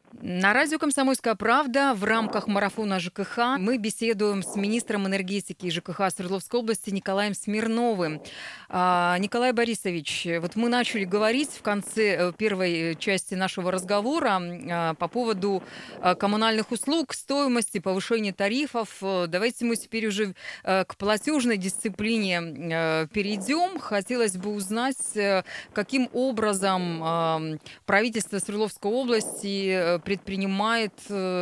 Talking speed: 105 wpm